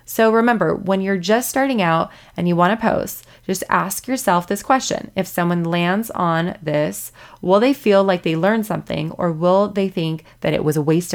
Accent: American